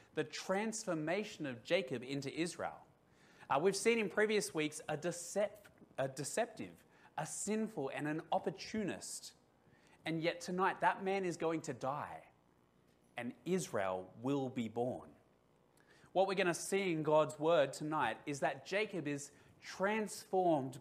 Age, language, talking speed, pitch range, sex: 30-49, English, 140 wpm, 115-175 Hz, male